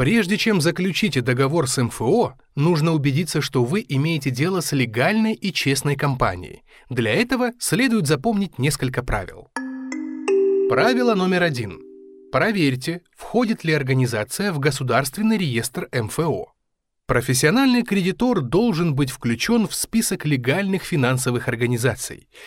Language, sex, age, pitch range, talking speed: Russian, male, 20-39, 125-200 Hz, 120 wpm